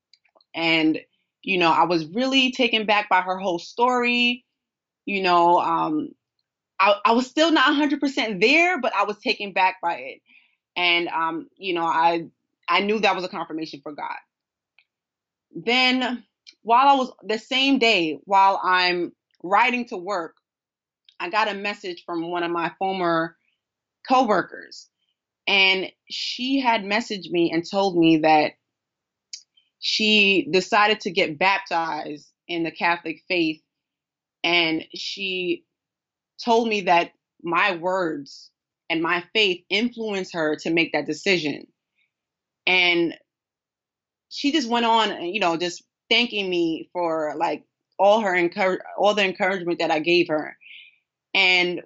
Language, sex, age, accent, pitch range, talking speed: English, female, 20-39, American, 170-220 Hz, 140 wpm